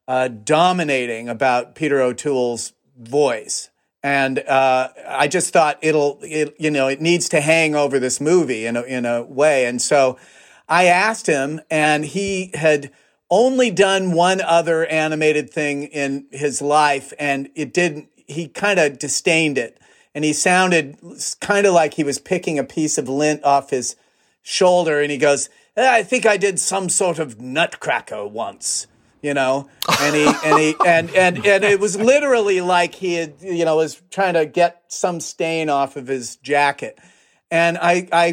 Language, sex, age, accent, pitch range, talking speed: English, male, 40-59, American, 140-170 Hz, 170 wpm